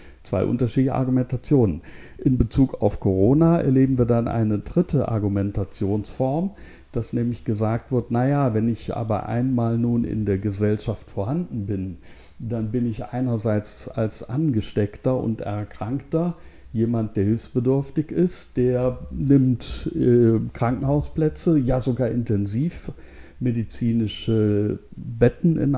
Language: German